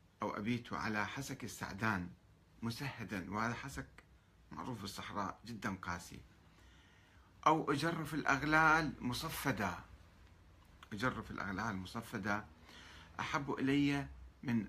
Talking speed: 95 wpm